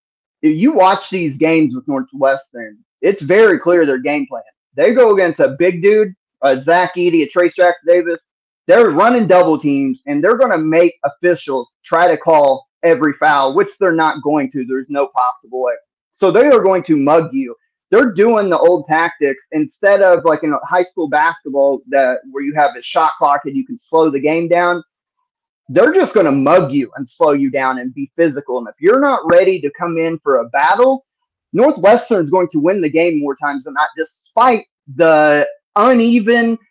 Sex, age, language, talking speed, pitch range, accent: male, 30-49, English, 200 wpm, 160-265 Hz, American